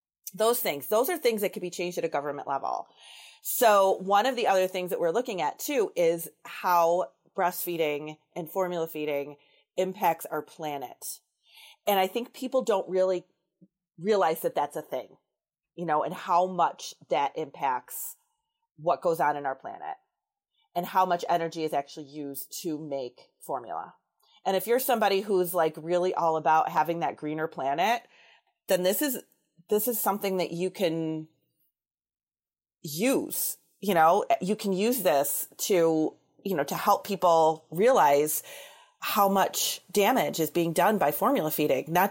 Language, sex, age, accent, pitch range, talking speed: English, female, 30-49, American, 160-215 Hz, 160 wpm